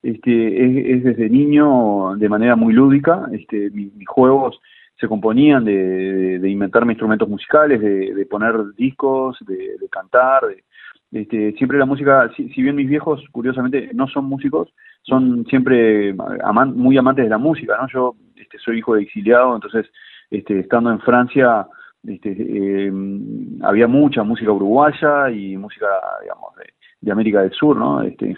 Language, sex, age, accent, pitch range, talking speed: Spanish, male, 30-49, Argentinian, 105-140 Hz, 140 wpm